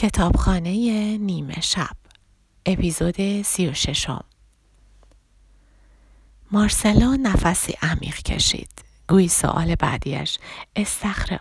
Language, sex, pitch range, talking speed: Persian, female, 165-215 Hz, 80 wpm